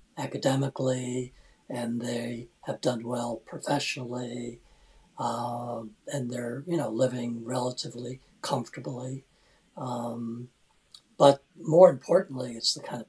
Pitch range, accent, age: 120-135 Hz, American, 60-79